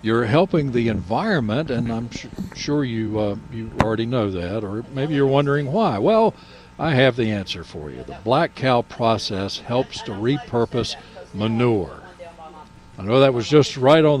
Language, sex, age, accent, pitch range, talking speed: English, male, 60-79, American, 115-155 Hz, 170 wpm